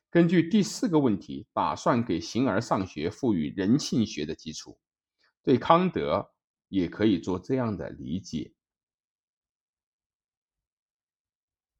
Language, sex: Chinese, male